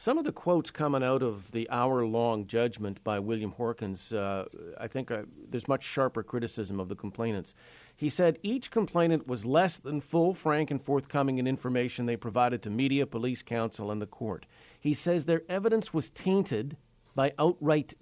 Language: English